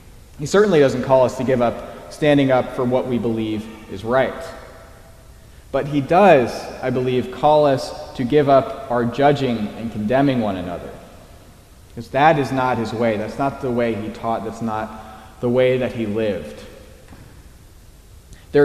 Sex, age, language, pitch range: male, 20-39, English, 110-140 Hz